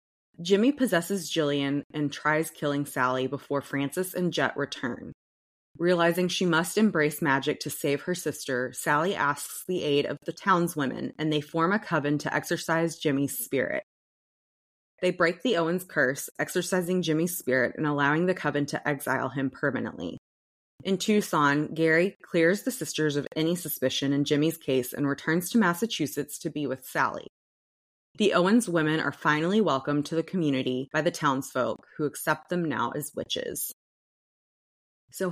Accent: American